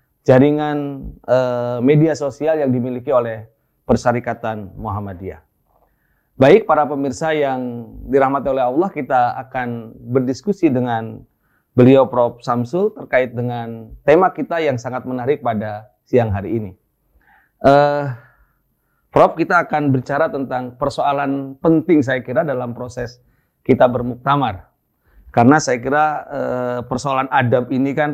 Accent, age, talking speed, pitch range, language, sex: native, 30-49, 120 wpm, 120-140 Hz, Indonesian, male